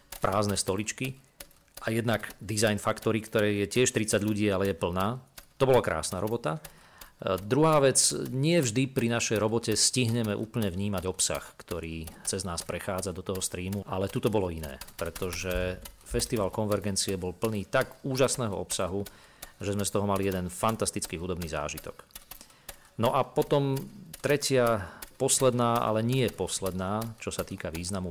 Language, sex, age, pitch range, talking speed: Slovak, male, 40-59, 90-115 Hz, 145 wpm